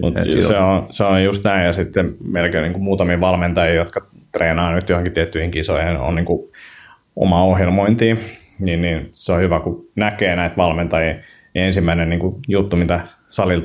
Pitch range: 85-95 Hz